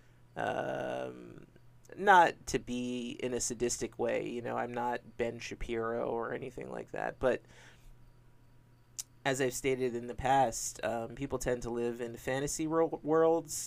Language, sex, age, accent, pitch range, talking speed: English, male, 30-49, American, 120-130 Hz, 145 wpm